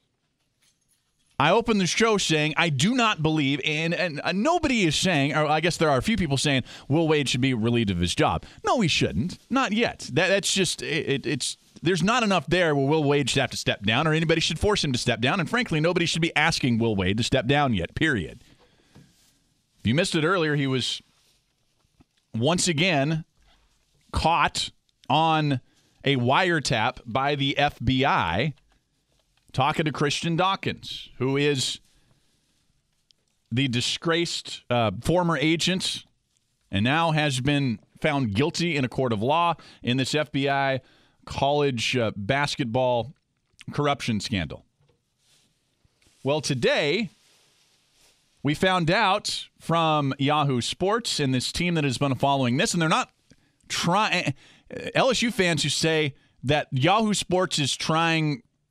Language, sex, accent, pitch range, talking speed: English, male, American, 130-165 Hz, 150 wpm